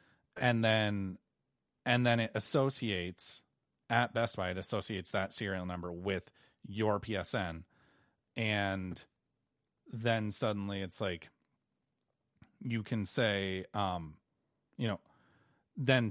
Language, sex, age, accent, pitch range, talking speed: English, male, 30-49, American, 95-125 Hz, 110 wpm